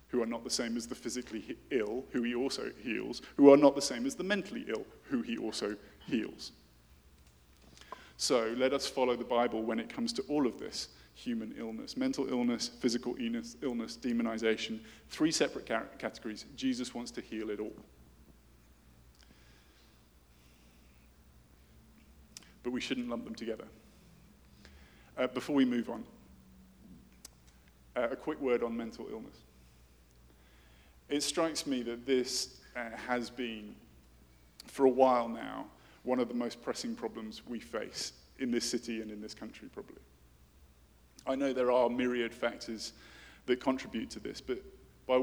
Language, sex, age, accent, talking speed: English, male, 20-39, British, 150 wpm